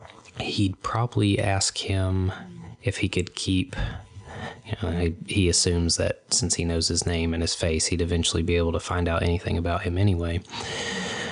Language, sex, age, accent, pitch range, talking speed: English, male, 20-39, American, 85-110 Hz, 175 wpm